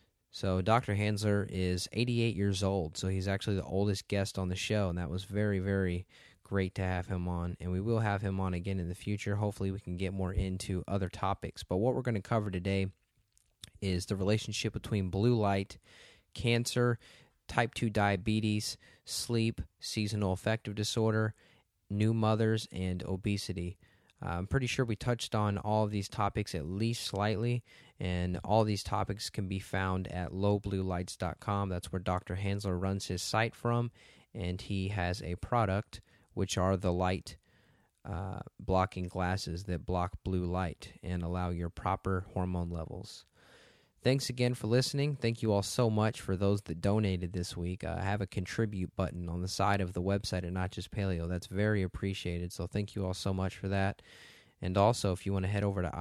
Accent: American